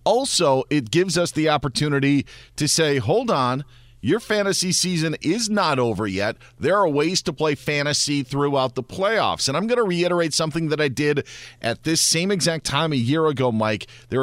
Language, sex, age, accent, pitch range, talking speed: English, male, 40-59, American, 130-160 Hz, 190 wpm